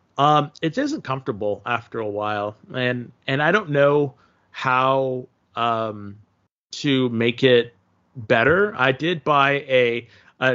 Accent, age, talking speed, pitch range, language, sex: American, 30-49, 130 wpm, 115-140 Hz, English, male